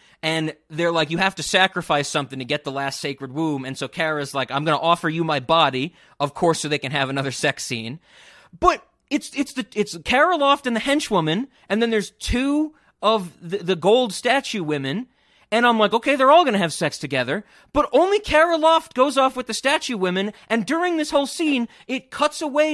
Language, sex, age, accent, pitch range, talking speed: English, male, 30-49, American, 150-240 Hz, 220 wpm